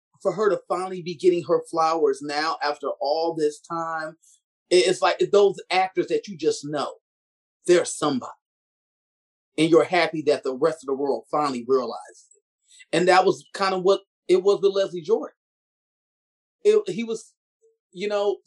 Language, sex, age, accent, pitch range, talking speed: English, male, 30-49, American, 170-260 Hz, 165 wpm